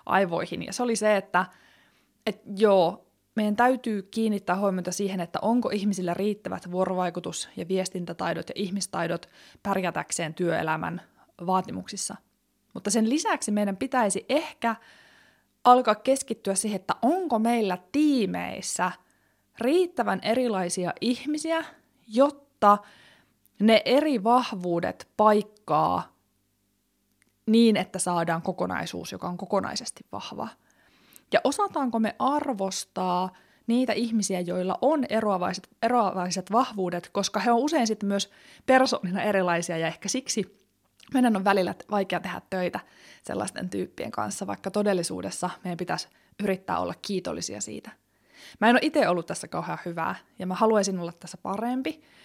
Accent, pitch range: native, 185-235 Hz